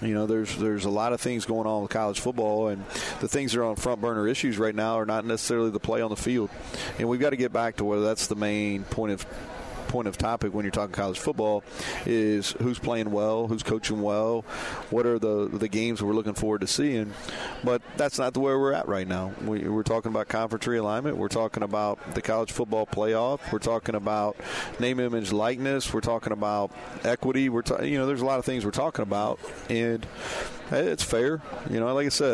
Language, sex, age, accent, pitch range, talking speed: English, male, 40-59, American, 105-125 Hz, 230 wpm